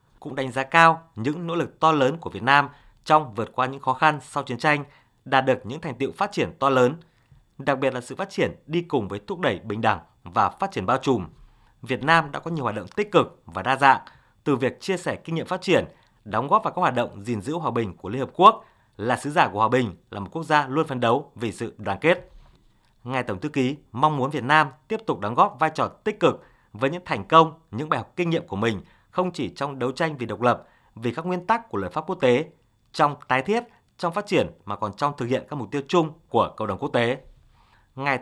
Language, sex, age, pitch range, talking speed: Vietnamese, male, 20-39, 120-160 Hz, 255 wpm